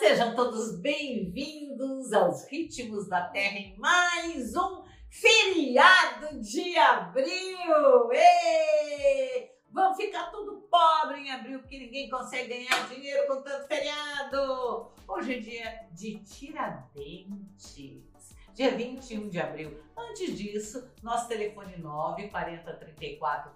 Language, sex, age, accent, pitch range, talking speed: Portuguese, female, 50-69, Brazilian, 195-310 Hz, 110 wpm